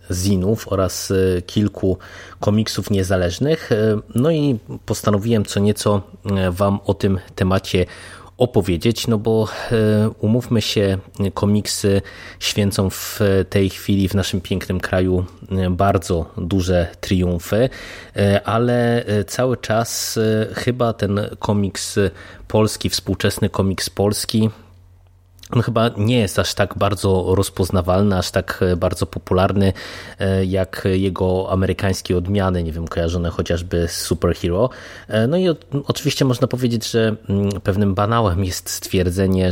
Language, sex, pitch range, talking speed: Polish, male, 90-105 Hz, 110 wpm